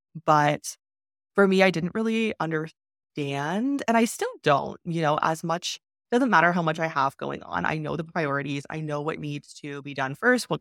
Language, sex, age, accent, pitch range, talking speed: English, female, 20-39, American, 150-185 Hz, 205 wpm